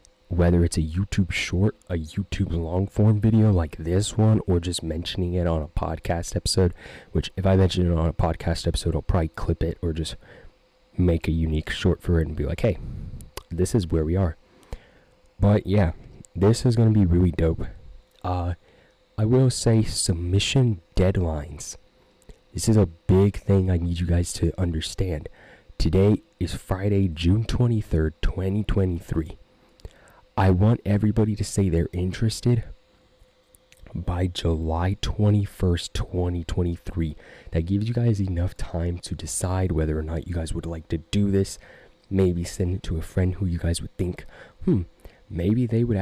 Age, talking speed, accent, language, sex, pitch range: 20-39, 165 wpm, American, English, male, 85-105 Hz